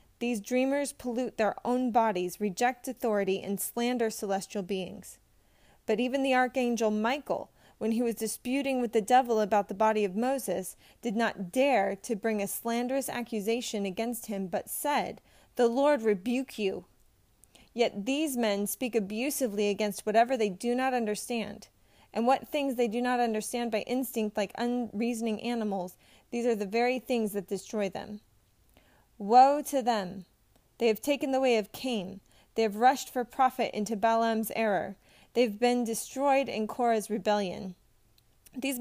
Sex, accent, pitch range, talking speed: female, American, 210-250 Hz, 155 wpm